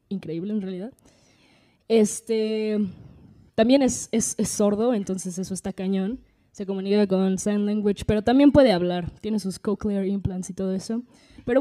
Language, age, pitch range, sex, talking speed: Spanish, 20-39, 190-225 Hz, female, 155 wpm